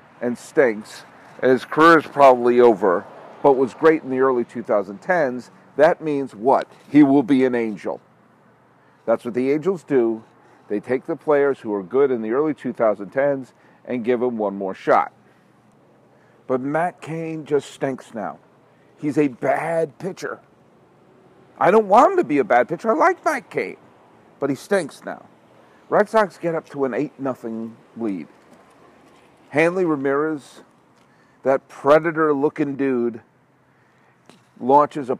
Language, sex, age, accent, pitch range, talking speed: English, male, 50-69, American, 130-175 Hz, 150 wpm